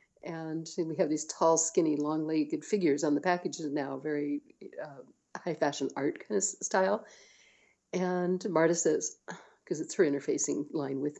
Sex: female